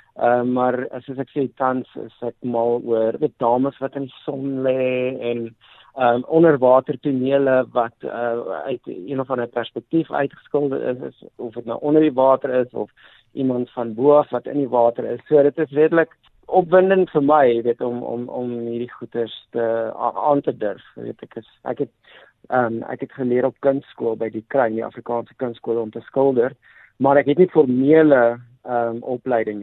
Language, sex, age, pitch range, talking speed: English, male, 50-69, 120-140 Hz, 180 wpm